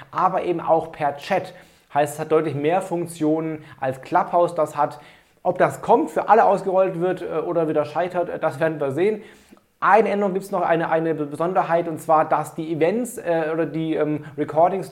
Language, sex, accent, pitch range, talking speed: German, male, German, 150-175 Hz, 190 wpm